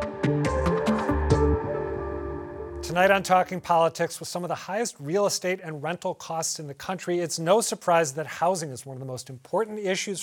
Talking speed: 170 wpm